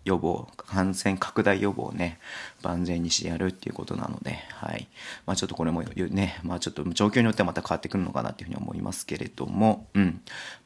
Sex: male